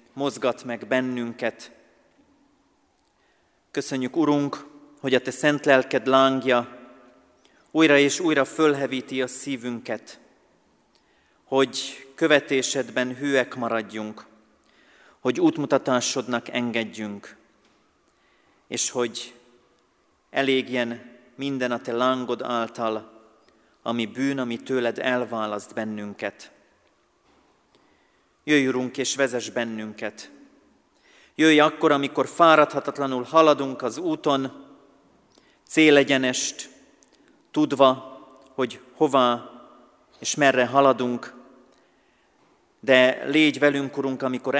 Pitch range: 120-140 Hz